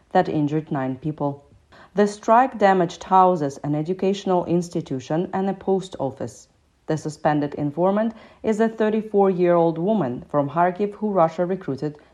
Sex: female